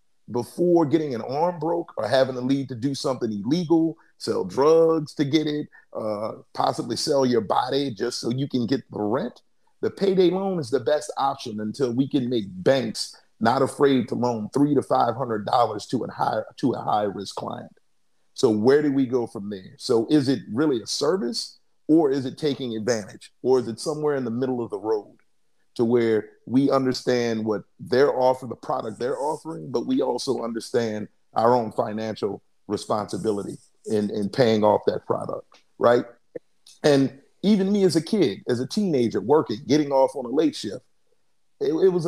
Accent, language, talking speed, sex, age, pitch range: American, English, 180 wpm, male, 40-59, 120-155 Hz